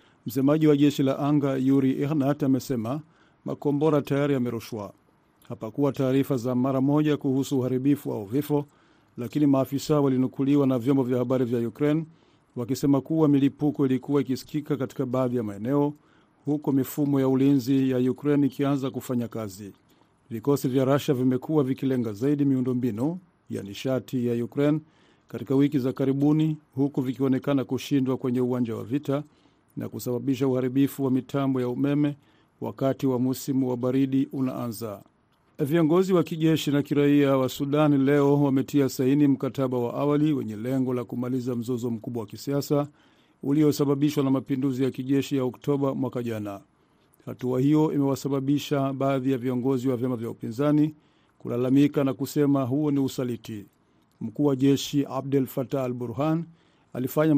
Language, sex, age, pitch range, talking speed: Swahili, male, 50-69, 130-145 Hz, 140 wpm